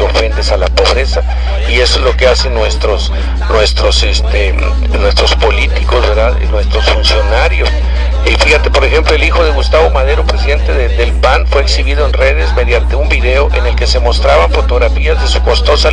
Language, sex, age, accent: English, male, 50-69, Mexican